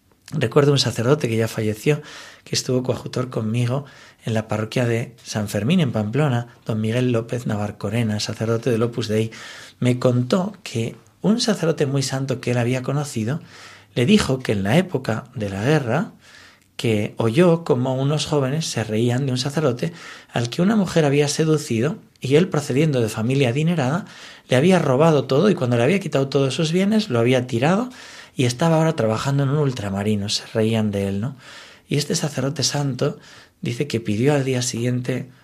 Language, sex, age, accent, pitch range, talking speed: Spanish, male, 40-59, Spanish, 110-150 Hz, 180 wpm